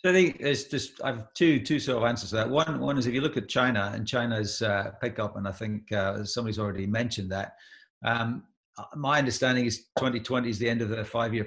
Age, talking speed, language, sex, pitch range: 40-59, 235 wpm, English, male, 105-115 Hz